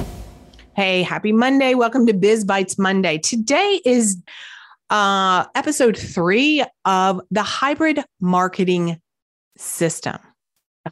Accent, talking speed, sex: American, 105 wpm, female